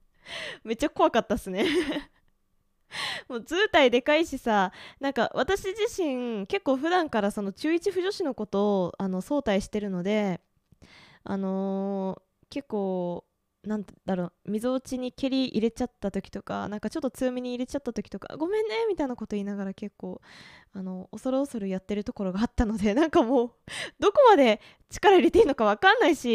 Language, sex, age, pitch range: Japanese, female, 20-39, 200-300 Hz